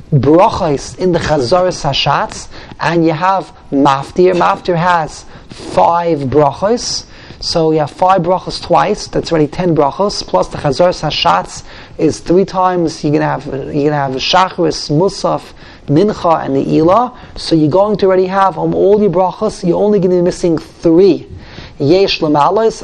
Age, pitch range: 30-49, 160-195 Hz